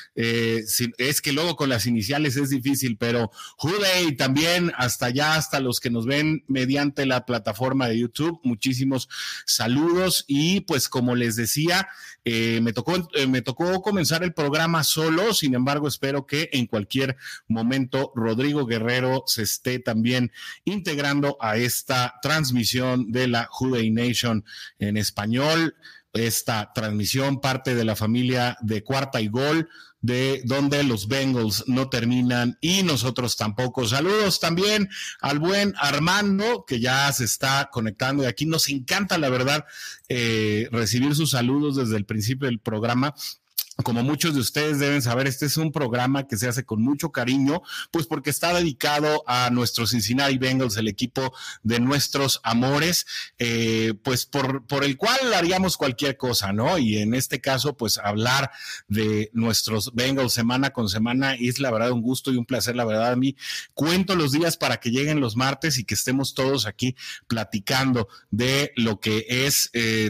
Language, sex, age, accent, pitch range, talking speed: Spanish, male, 40-59, Mexican, 120-145 Hz, 160 wpm